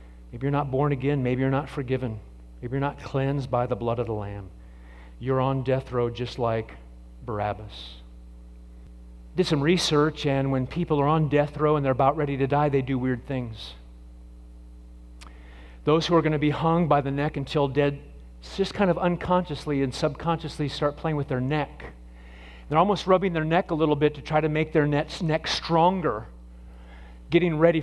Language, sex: English, male